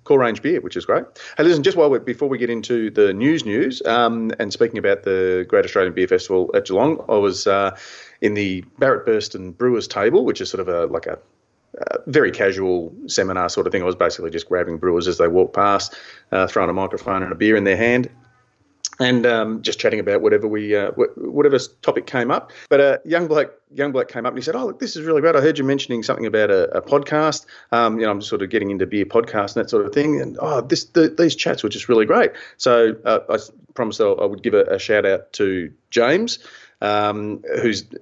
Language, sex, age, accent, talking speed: English, male, 30-49, Australian, 240 wpm